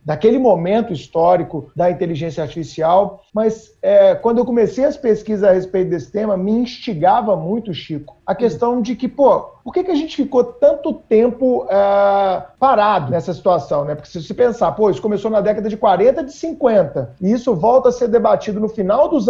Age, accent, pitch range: 50-69, Brazilian, 185-225 Hz